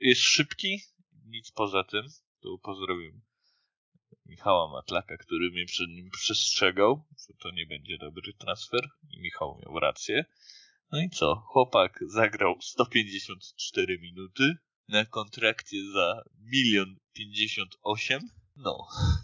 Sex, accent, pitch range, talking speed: male, native, 100-130 Hz, 110 wpm